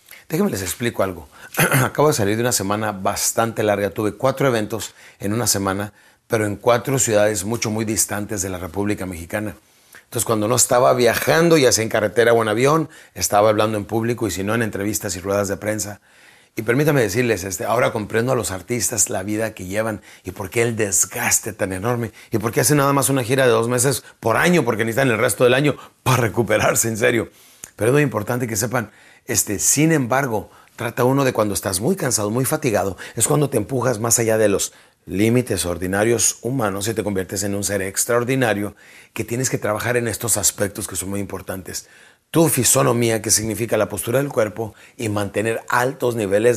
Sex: male